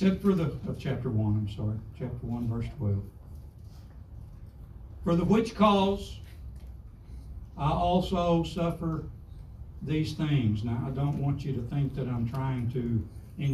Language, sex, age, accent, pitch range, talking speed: English, male, 60-79, American, 105-145 Hz, 145 wpm